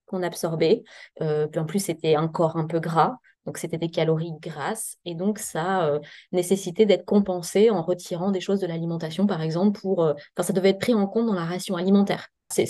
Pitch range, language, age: 175-210 Hz, French, 20-39